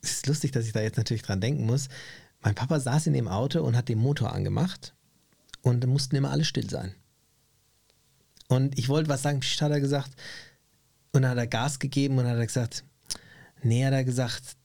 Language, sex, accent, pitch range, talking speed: German, male, German, 120-150 Hz, 215 wpm